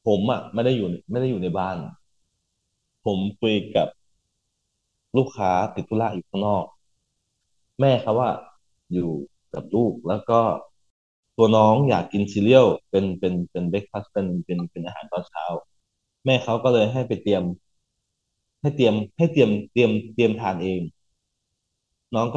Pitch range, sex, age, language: 95-125 Hz, male, 20-39, Thai